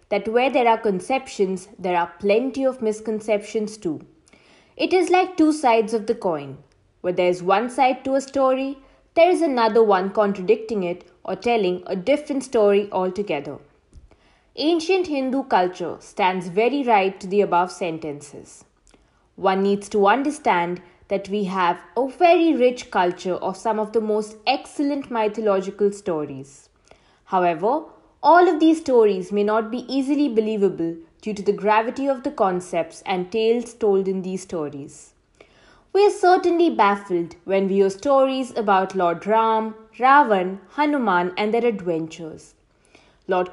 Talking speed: 150 wpm